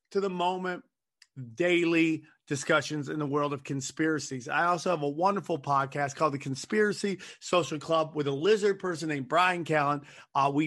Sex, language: male, English